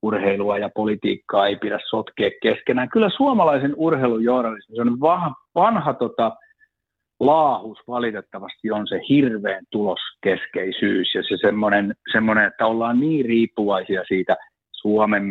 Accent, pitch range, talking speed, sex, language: native, 105-135 Hz, 110 wpm, male, Finnish